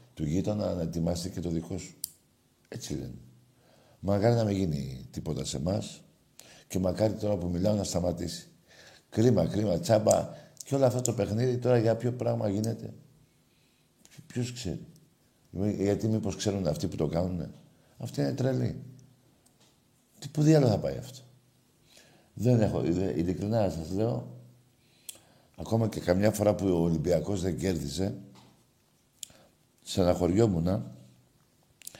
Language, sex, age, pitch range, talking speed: Greek, male, 50-69, 85-120 Hz, 135 wpm